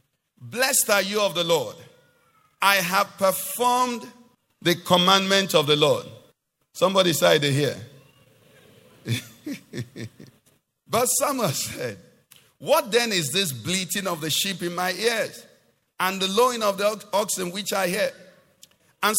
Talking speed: 130 wpm